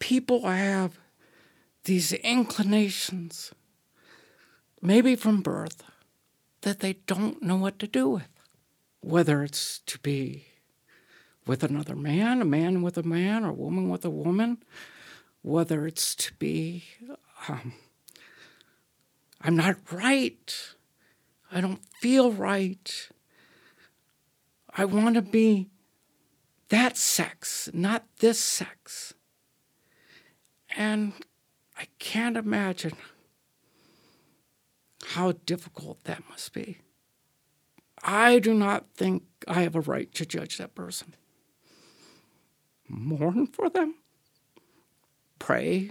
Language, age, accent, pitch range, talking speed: English, 60-79, American, 165-220 Hz, 105 wpm